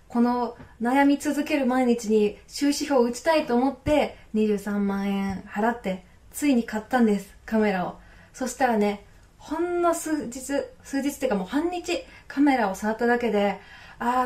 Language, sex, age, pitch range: Japanese, female, 20-39, 205-285 Hz